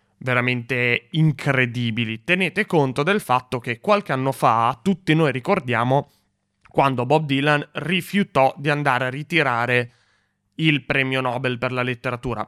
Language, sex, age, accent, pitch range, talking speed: Italian, male, 20-39, native, 120-155 Hz, 130 wpm